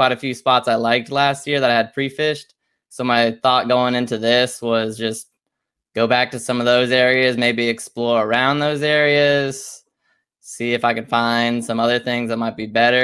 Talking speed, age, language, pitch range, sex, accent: 200 wpm, 10-29, English, 120-130 Hz, male, American